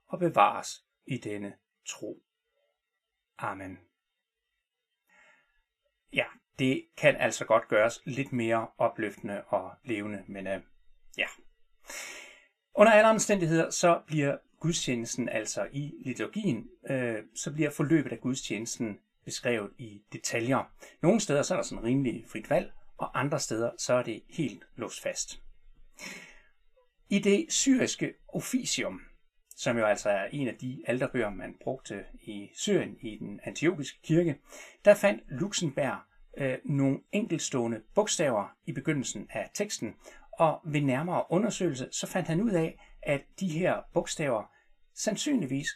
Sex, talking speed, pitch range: male, 130 wpm, 120-200 Hz